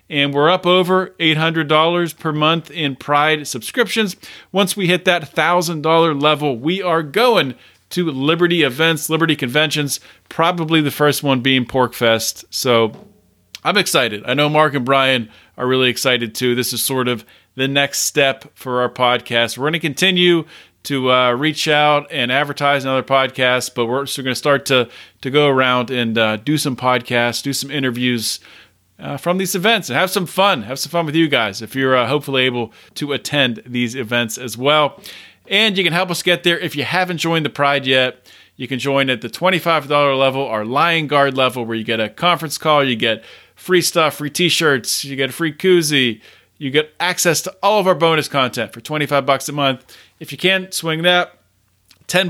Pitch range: 125-165 Hz